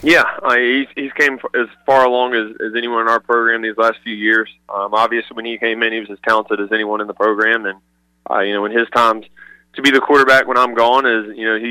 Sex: male